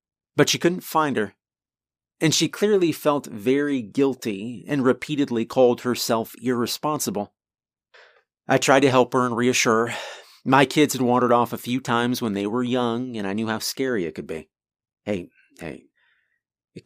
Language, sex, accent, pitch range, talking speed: English, male, American, 105-140 Hz, 165 wpm